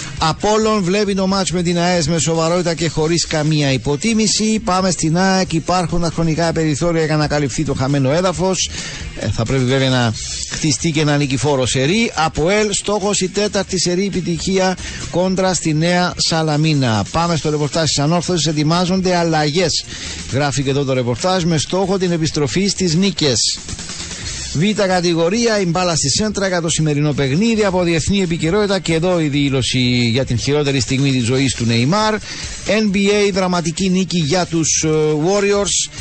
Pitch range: 145-180 Hz